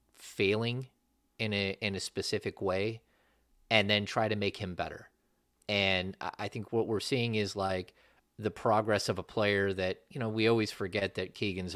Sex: male